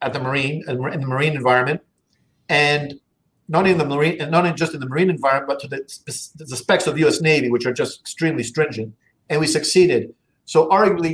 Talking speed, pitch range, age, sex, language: 210 wpm, 140-165 Hz, 50-69, male, English